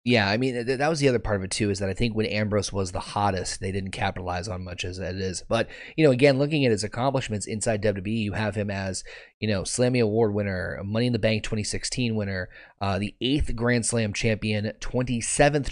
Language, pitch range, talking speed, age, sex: English, 100-120 Hz, 230 wpm, 30-49, male